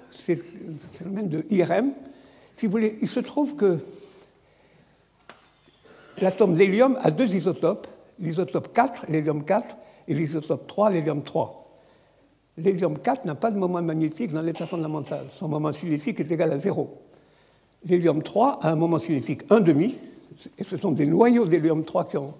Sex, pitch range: male, 165-220 Hz